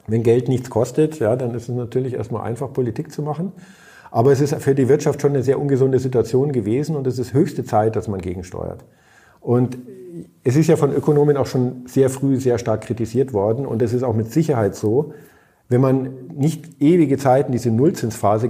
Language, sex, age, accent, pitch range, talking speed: German, male, 50-69, German, 115-140 Hz, 200 wpm